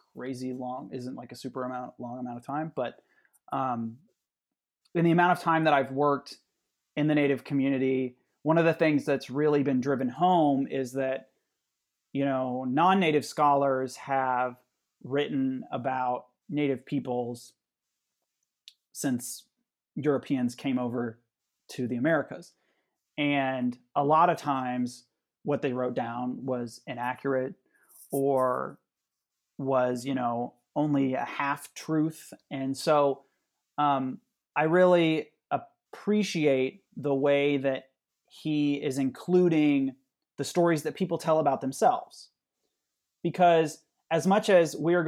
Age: 30-49